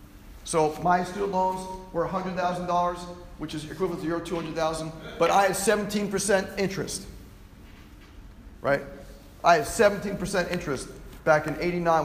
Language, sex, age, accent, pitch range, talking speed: English, male, 40-59, American, 165-205 Hz, 125 wpm